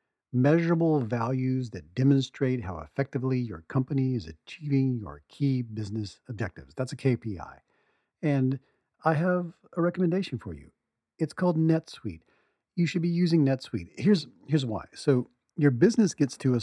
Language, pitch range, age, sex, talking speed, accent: English, 115-155 Hz, 40-59, male, 150 wpm, American